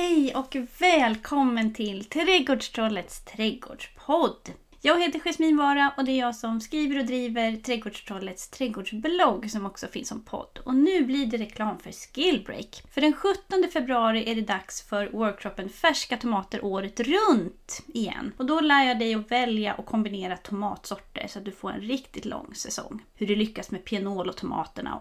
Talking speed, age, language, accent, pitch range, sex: 170 wpm, 30-49, Swedish, native, 210-280 Hz, female